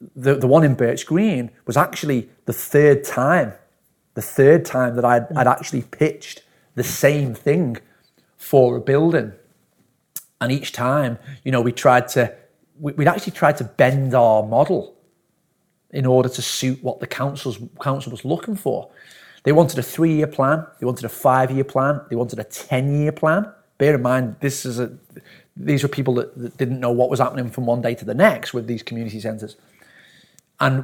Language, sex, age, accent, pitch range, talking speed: English, male, 30-49, British, 120-145 Hz, 185 wpm